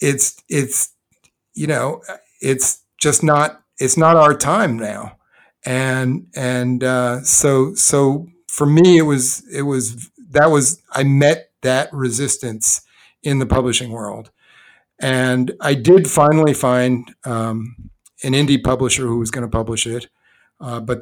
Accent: American